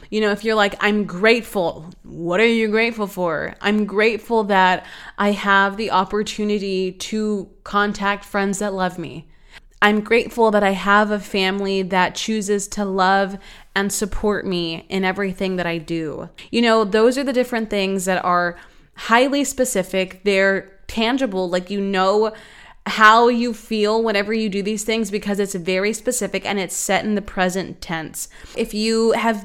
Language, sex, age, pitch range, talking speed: English, female, 20-39, 195-230 Hz, 165 wpm